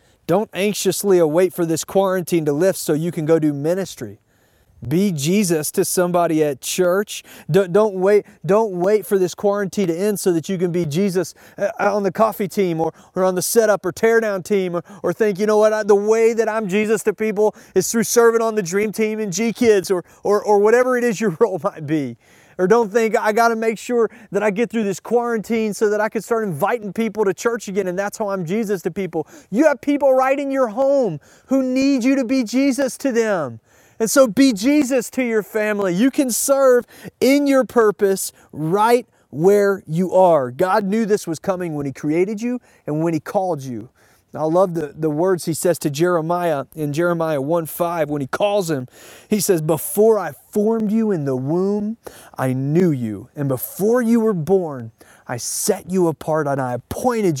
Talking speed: 205 wpm